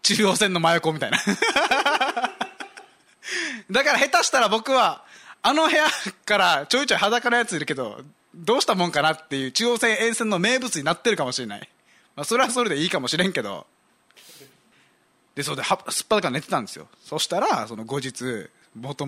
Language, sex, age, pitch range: Japanese, male, 20-39, 145-240 Hz